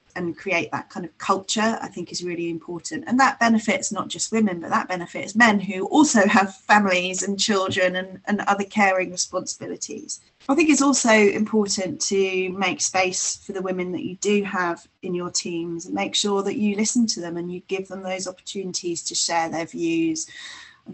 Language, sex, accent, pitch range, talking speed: English, female, British, 180-210 Hz, 200 wpm